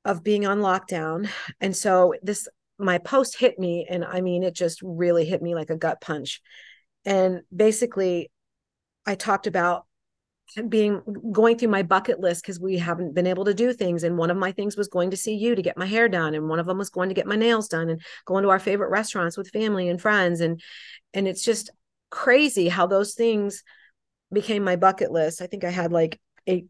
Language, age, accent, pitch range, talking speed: English, 40-59, American, 175-205 Hz, 215 wpm